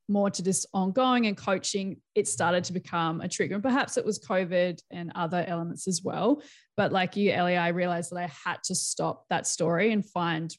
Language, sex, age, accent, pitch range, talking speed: English, female, 20-39, Australian, 175-200 Hz, 210 wpm